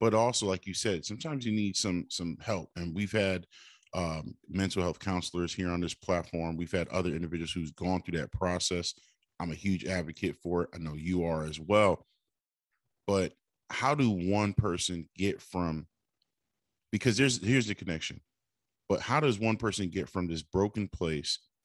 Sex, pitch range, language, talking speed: male, 85-105 Hz, English, 180 wpm